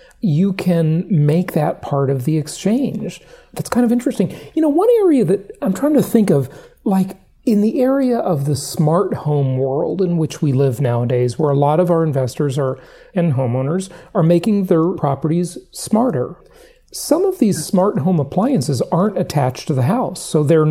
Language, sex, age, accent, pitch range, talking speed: English, male, 40-59, American, 150-205 Hz, 180 wpm